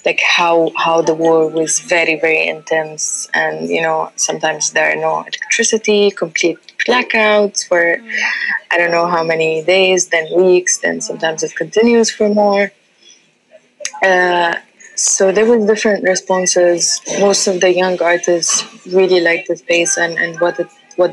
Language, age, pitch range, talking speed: English, 20-39, 165-195 Hz, 155 wpm